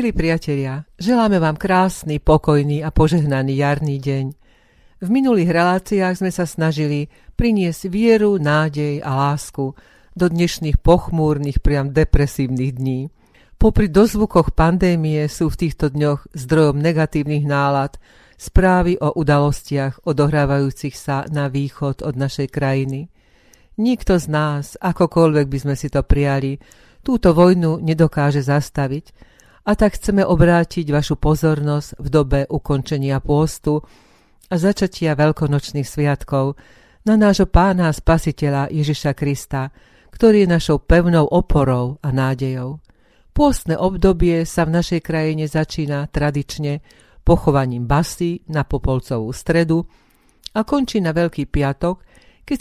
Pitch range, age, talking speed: 140-175 Hz, 40-59, 120 wpm